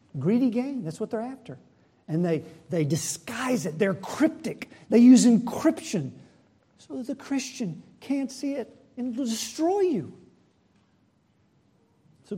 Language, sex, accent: English, male, American